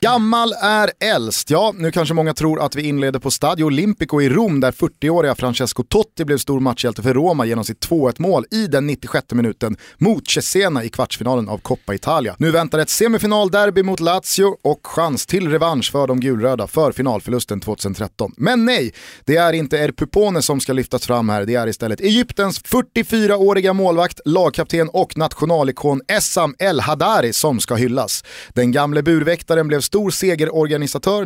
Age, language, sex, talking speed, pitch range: 30-49, Swedish, male, 165 wpm, 125-180 Hz